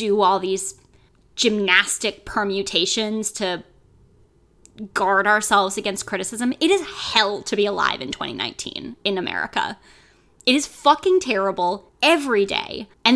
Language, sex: English, female